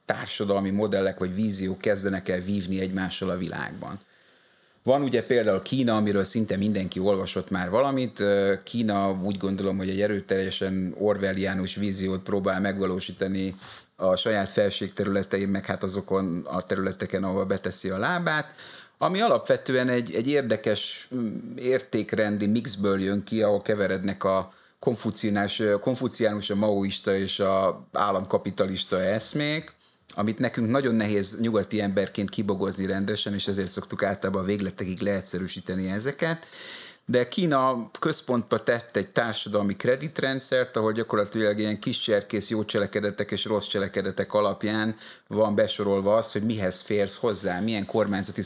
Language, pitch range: Hungarian, 95-115 Hz